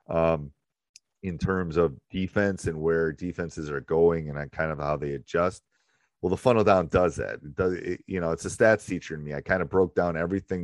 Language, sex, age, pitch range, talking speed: English, male, 30-49, 80-95 Hz, 225 wpm